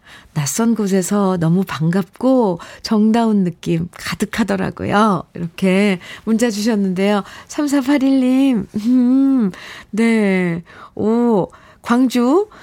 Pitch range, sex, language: 180-245 Hz, female, Korean